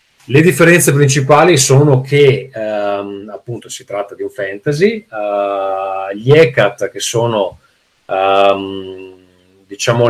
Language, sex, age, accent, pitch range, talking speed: Italian, male, 30-49, native, 105-135 Hz, 115 wpm